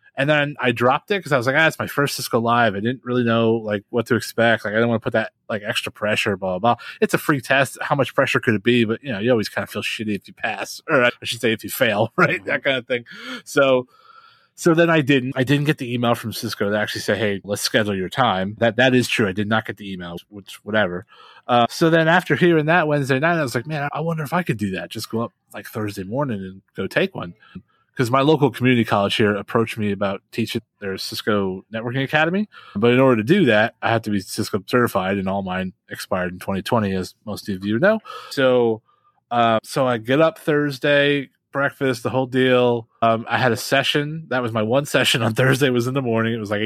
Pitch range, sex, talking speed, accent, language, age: 105-135 Hz, male, 255 wpm, American, English, 30-49